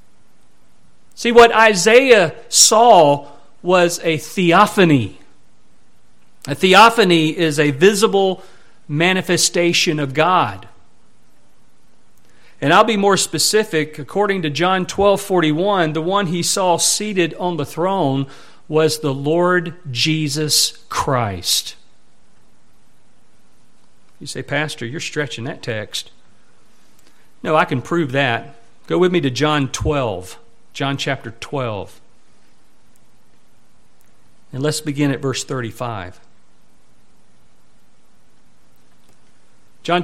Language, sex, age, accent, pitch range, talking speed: English, male, 50-69, American, 130-190 Hz, 100 wpm